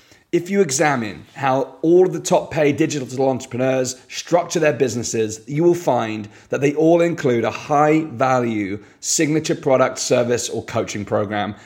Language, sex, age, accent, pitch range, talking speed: English, male, 30-49, British, 115-155 Hz, 155 wpm